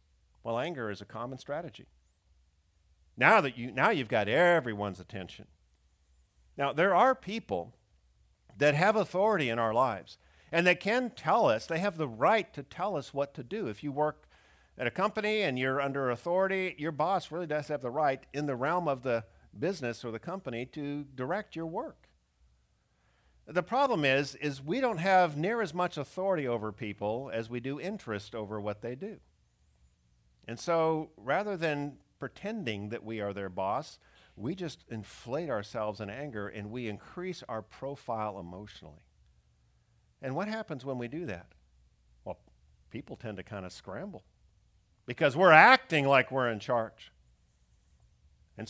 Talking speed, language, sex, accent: 165 wpm, English, male, American